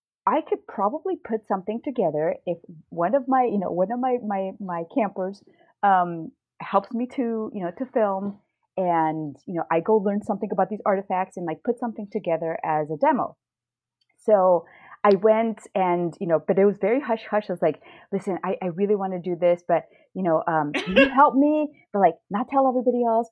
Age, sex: 30-49, female